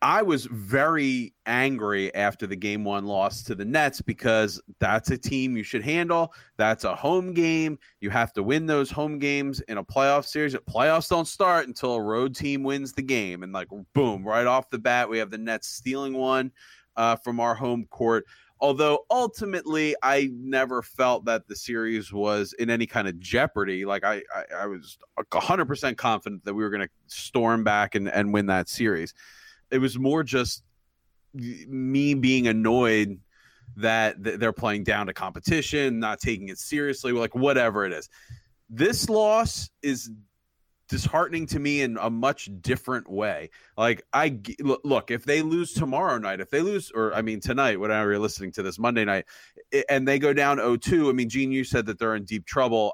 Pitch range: 105-135 Hz